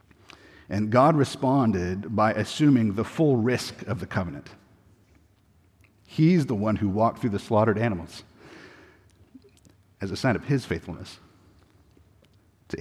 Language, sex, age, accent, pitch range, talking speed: English, male, 50-69, American, 95-130 Hz, 125 wpm